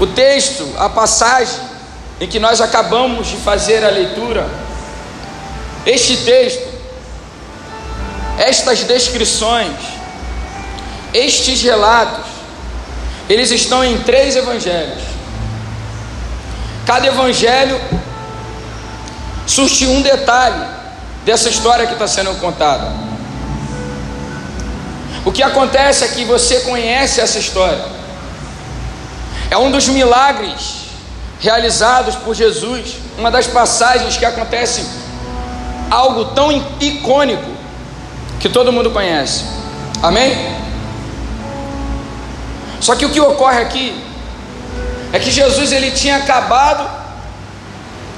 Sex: male